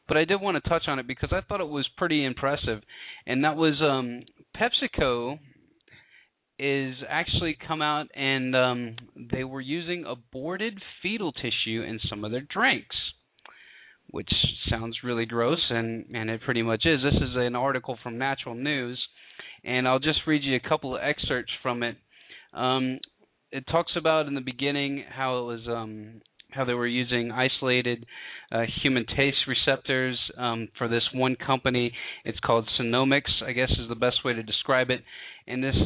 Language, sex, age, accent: English, male, 30-49, American